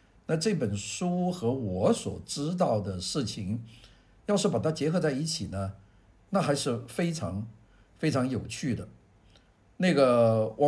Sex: male